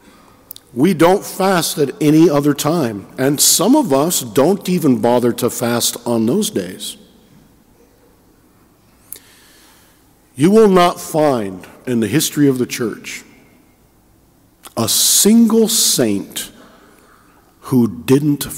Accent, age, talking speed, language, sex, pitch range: American, 50-69, 110 wpm, English, male, 115-150 Hz